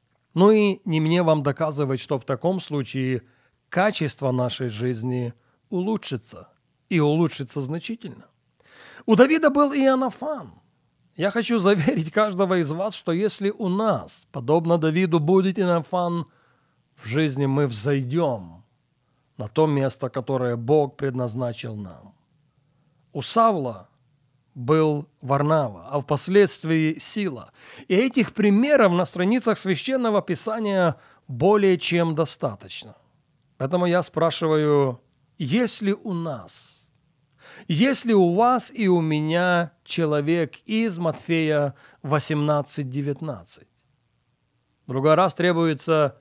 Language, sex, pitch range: Russian, male, 140-185 Hz